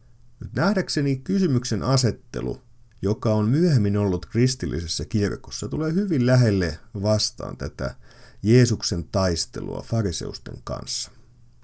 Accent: native